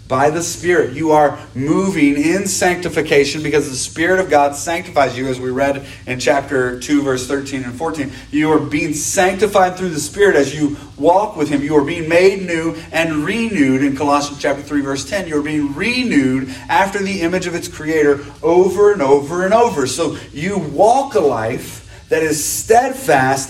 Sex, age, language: male, 30-49, English